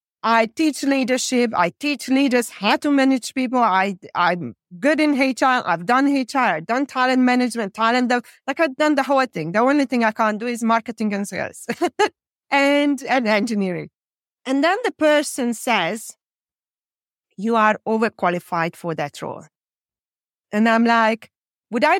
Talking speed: 160 wpm